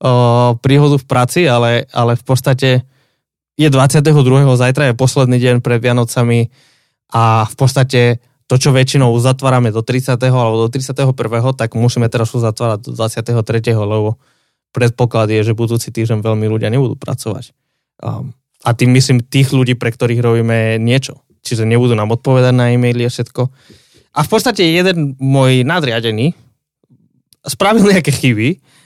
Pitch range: 120-140 Hz